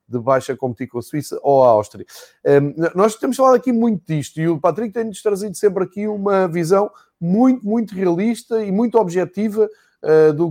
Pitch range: 145-185 Hz